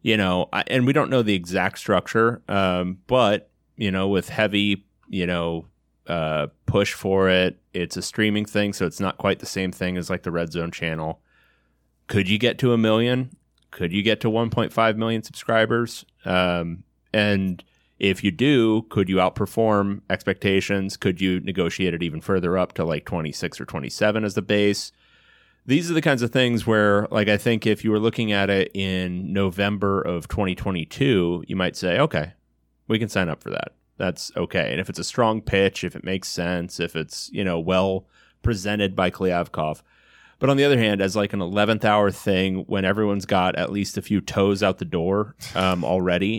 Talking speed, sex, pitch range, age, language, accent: 195 wpm, male, 90-110 Hz, 30-49, English, American